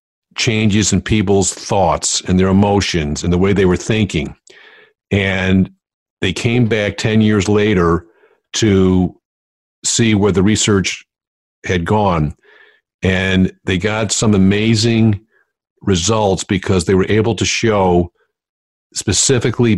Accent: American